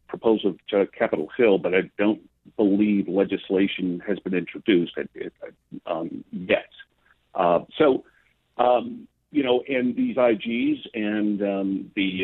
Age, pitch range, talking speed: 50-69, 90-110 Hz, 125 wpm